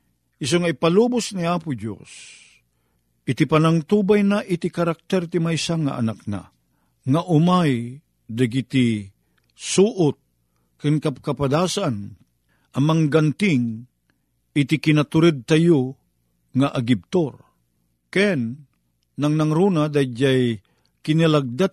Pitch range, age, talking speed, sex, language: 105-175 Hz, 50-69, 100 wpm, male, Filipino